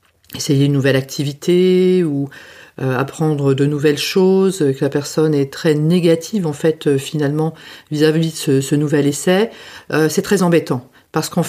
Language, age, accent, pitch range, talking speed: French, 40-59, French, 145-185 Hz, 160 wpm